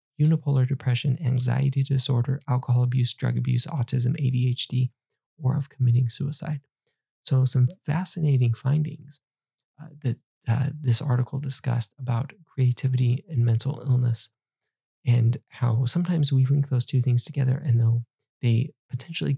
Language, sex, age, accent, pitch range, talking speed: English, male, 20-39, American, 125-145 Hz, 130 wpm